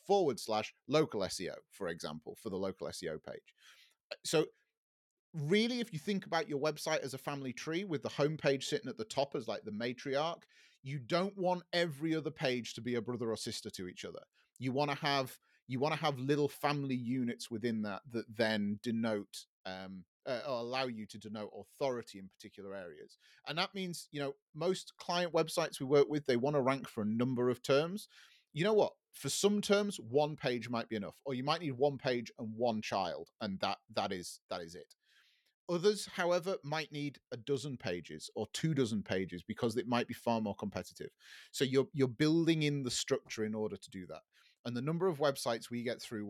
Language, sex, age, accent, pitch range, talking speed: English, male, 30-49, British, 115-155 Hz, 210 wpm